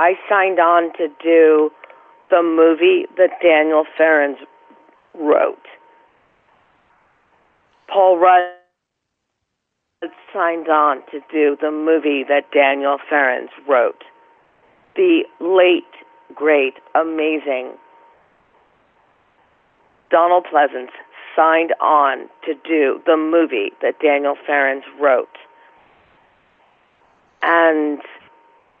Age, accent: 50-69, American